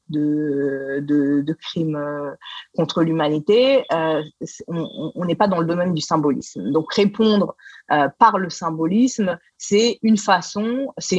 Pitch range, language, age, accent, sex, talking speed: 155-205 Hz, French, 30-49, French, female, 135 wpm